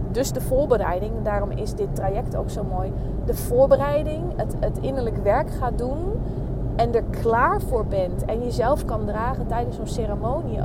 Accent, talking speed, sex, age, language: Dutch, 170 wpm, female, 20-39, Dutch